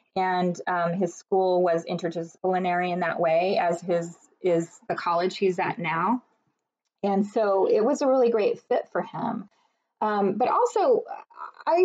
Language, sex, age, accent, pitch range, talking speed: English, female, 20-39, American, 175-230 Hz, 155 wpm